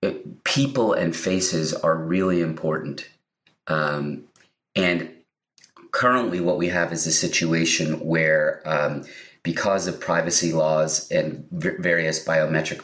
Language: English